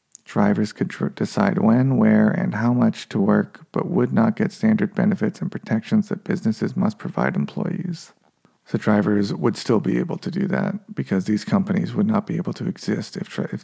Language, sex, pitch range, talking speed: English, male, 170-205 Hz, 190 wpm